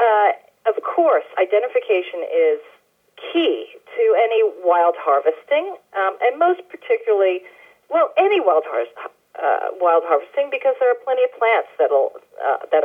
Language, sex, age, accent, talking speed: English, female, 40-59, American, 135 wpm